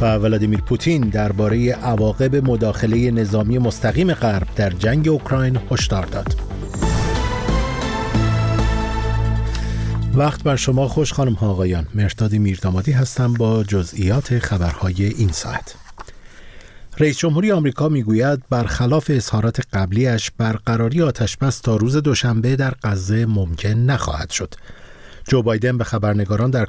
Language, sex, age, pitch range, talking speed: Persian, male, 50-69, 105-130 Hz, 120 wpm